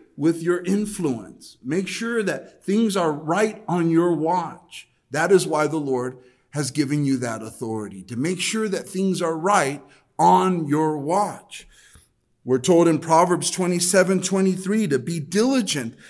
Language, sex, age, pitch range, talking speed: English, male, 40-59, 130-190 Hz, 155 wpm